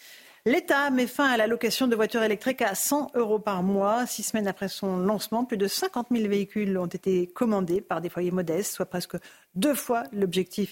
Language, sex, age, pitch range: French, female, 50-69, 185-225 Hz